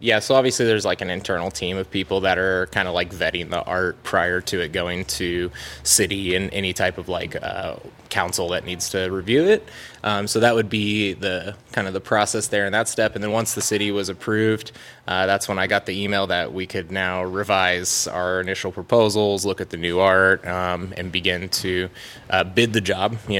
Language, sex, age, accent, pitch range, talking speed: English, male, 20-39, American, 95-110 Hz, 220 wpm